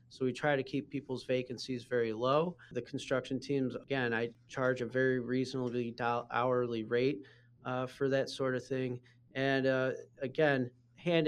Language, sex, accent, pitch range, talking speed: English, male, American, 120-140 Hz, 165 wpm